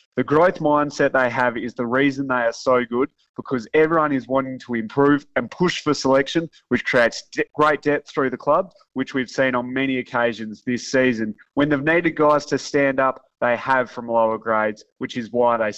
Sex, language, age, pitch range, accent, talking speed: male, English, 20-39, 115-140 Hz, Australian, 200 wpm